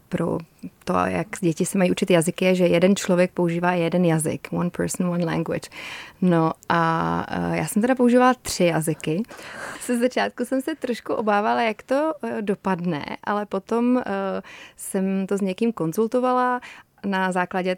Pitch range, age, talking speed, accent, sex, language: 175-215 Hz, 30-49, 150 wpm, native, female, Czech